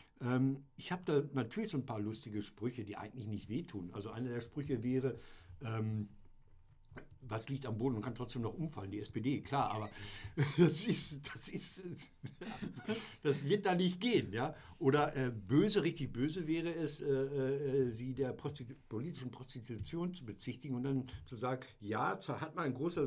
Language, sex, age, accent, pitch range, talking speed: German, male, 60-79, German, 115-155 Hz, 175 wpm